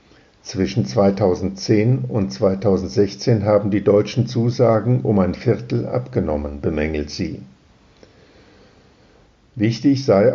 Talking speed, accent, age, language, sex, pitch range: 95 wpm, German, 50-69, German, male, 100-120 Hz